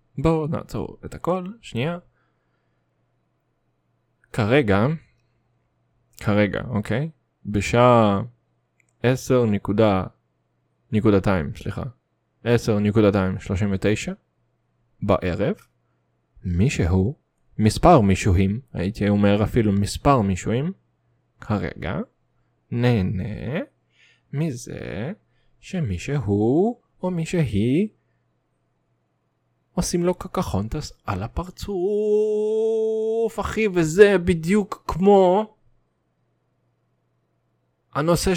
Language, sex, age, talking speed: English, male, 20-39, 55 wpm